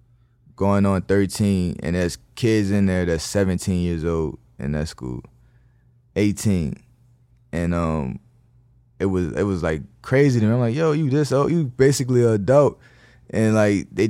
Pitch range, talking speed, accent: 90-110 Hz, 165 wpm, American